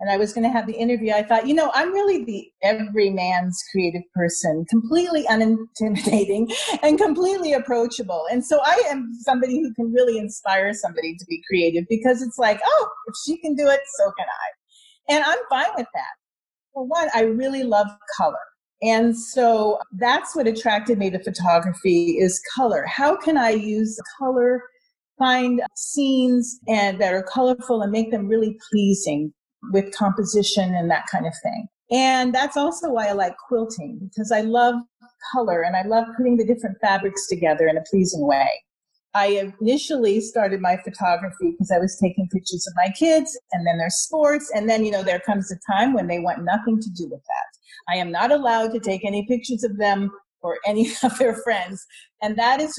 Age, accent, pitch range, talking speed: 40-59, American, 195-255 Hz, 190 wpm